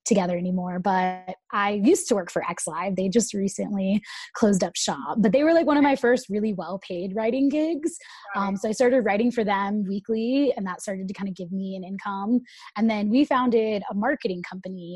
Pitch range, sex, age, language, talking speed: 195-255 Hz, female, 20-39, English, 215 wpm